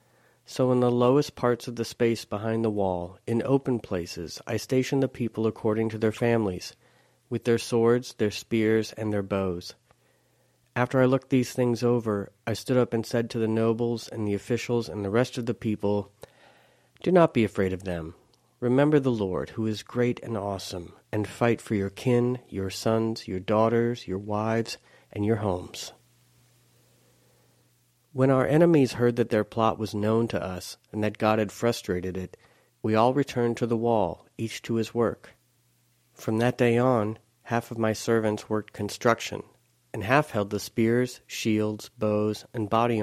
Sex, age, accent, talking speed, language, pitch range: male, 40-59, American, 175 wpm, English, 105-120 Hz